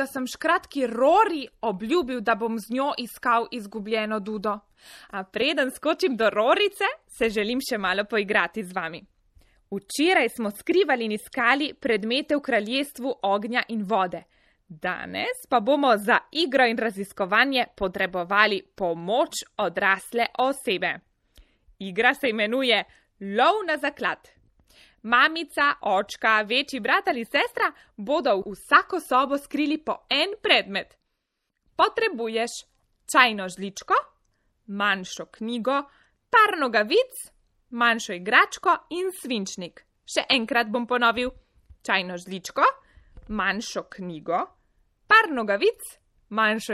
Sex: female